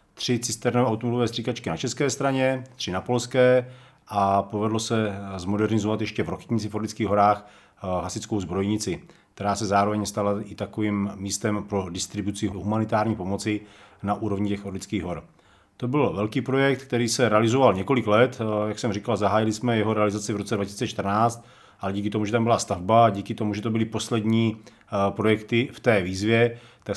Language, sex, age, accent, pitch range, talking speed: Czech, male, 40-59, native, 105-120 Hz, 165 wpm